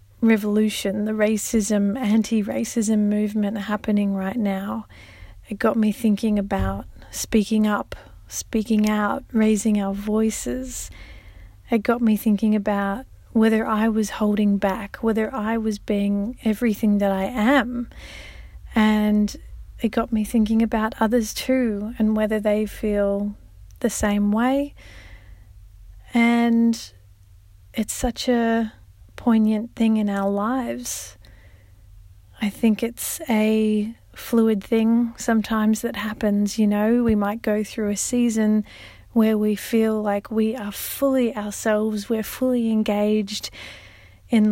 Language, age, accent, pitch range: English, 30-49, Australian, 200-225 Hz